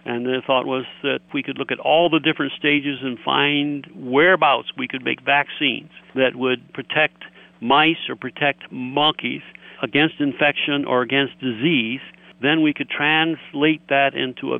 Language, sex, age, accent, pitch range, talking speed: English, male, 60-79, American, 130-155 Hz, 160 wpm